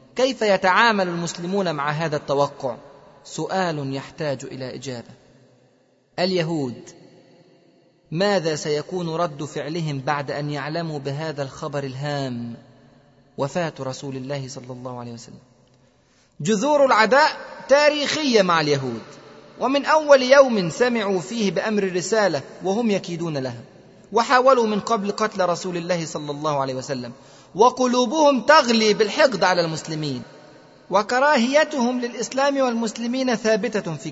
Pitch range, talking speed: 140-210 Hz, 110 wpm